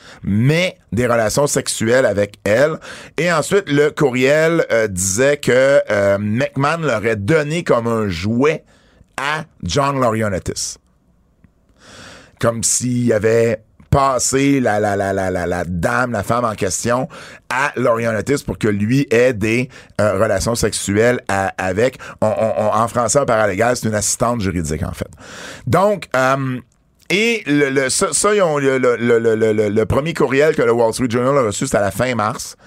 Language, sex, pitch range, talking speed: French, male, 105-135 Hz, 165 wpm